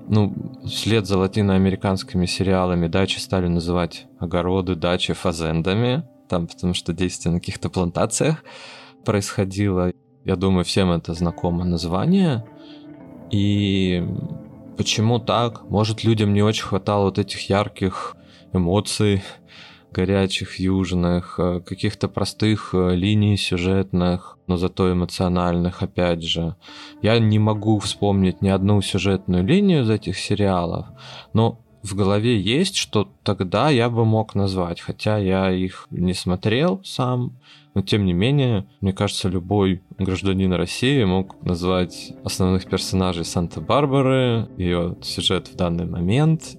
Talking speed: 120 wpm